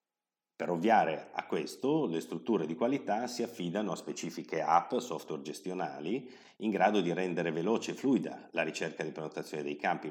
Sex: male